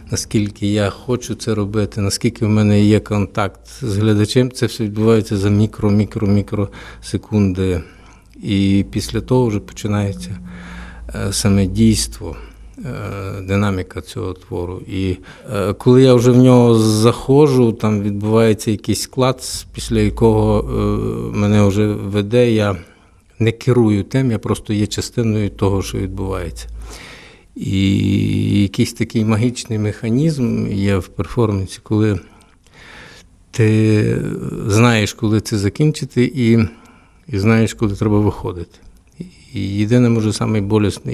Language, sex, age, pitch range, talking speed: Ukrainian, male, 50-69, 100-115 Hz, 115 wpm